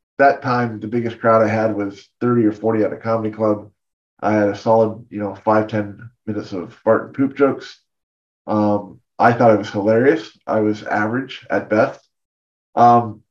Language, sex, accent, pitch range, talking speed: English, male, American, 105-120 Hz, 185 wpm